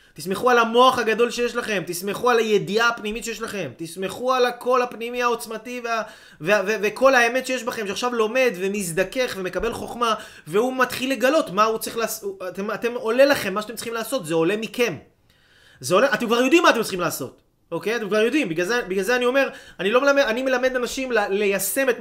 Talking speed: 200 wpm